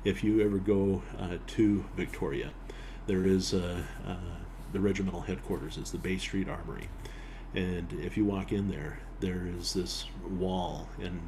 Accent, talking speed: American, 160 wpm